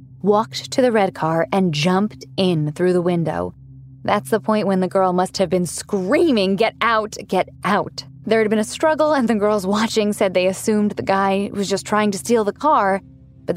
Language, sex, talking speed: English, female, 210 wpm